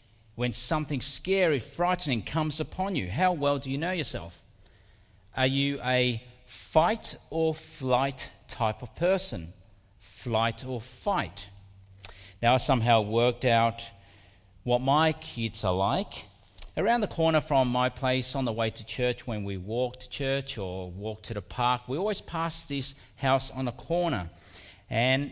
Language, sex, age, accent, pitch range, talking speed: English, male, 40-59, Australian, 110-145 Hz, 150 wpm